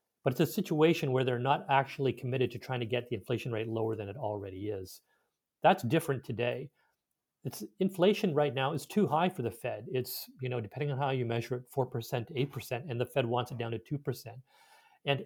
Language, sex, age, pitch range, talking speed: English, male, 40-59, 120-145 Hz, 225 wpm